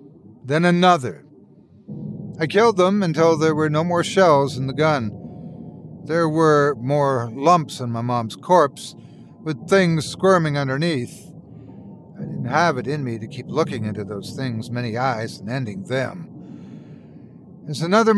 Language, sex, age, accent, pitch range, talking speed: English, male, 60-79, American, 130-170 Hz, 150 wpm